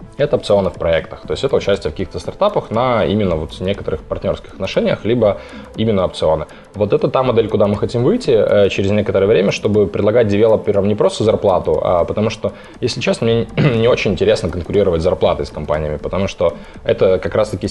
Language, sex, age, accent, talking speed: Ukrainian, male, 20-39, native, 190 wpm